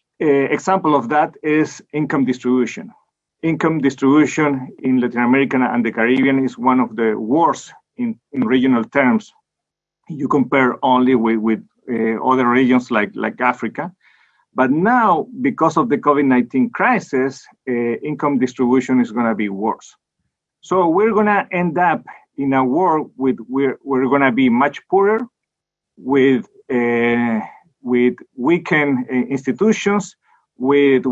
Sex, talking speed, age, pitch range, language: male, 145 wpm, 40-59, 125-165 Hz, English